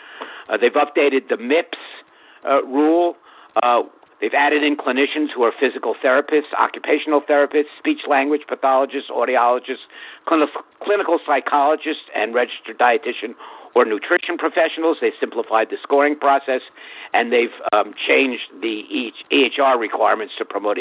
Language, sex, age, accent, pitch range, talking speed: English, male, 60-79, American, 130-160 Hz, 135 wpm